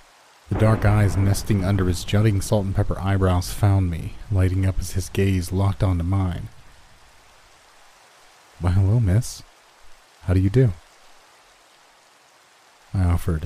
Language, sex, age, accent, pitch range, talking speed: English, male, 30-49, American, 90-110 Hz, 125 wpm